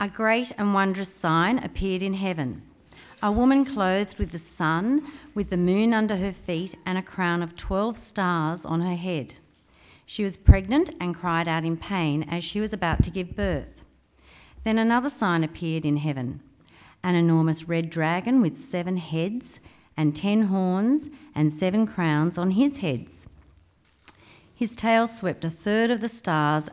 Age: 40-59